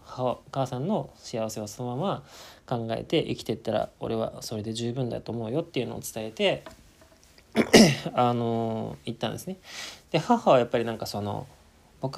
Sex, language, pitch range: male, Japanese, 105-135 Hz